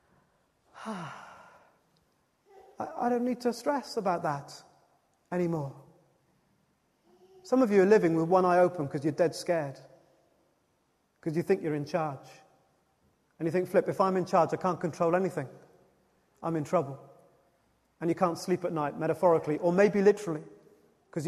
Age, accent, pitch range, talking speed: 30-49, British, 165-230 Hz, 150 wpm